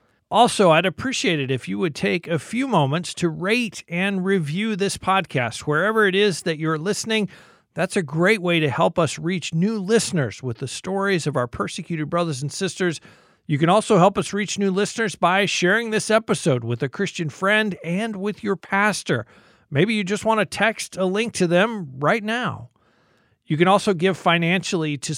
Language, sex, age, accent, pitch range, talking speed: English, male, 50-69, American, 150-195 Hz, 190 wpm